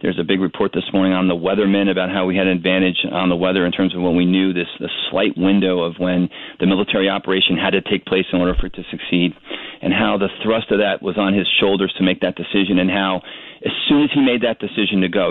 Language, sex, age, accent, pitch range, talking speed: English, male, 40-59, American, 90-100 Hz, 265 wpm